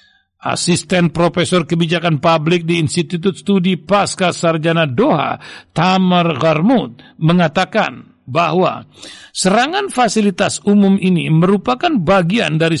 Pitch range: 165-210 Hz